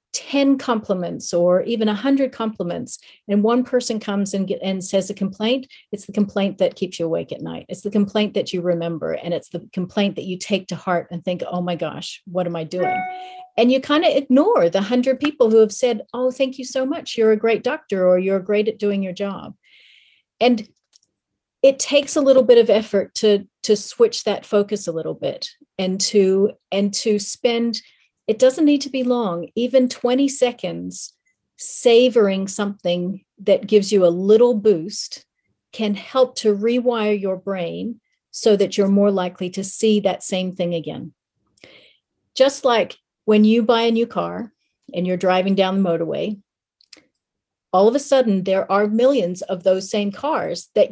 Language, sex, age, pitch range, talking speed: English, female, 40-59, 190-250 Hz, 185 wpm